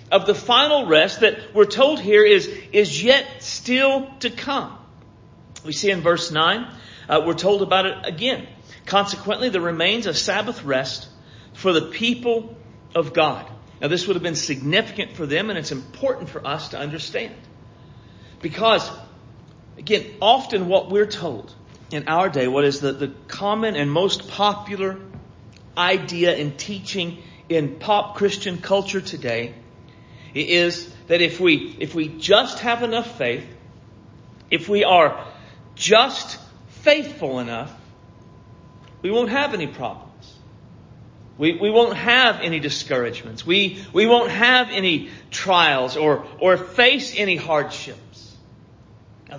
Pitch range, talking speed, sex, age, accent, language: 130-205 Hz, 140 wpm, male, 50-69, American, English